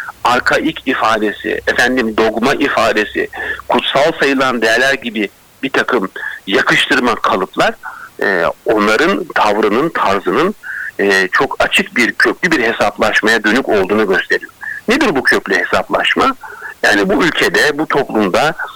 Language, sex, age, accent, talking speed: Turkish, male, 60-79, native, 115 wpm